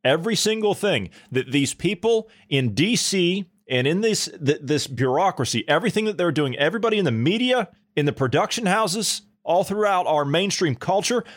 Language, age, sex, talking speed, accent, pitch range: English, 30-49, male, 165 wpm, American, 130-195 Hz